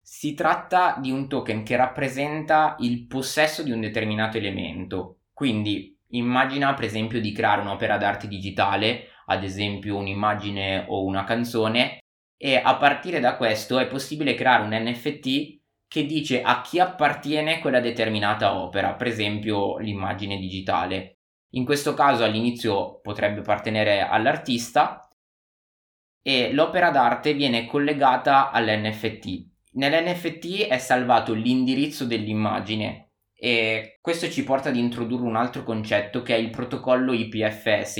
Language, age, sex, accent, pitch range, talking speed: Italian, 20-39, male, native, 105-135 Hz, 130 wpm